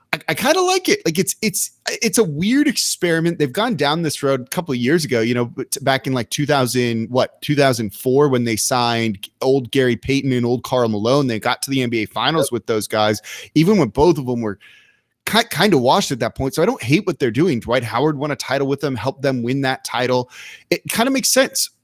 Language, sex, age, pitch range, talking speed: English, male, 30-49, 125-170 Hz, 235 wpm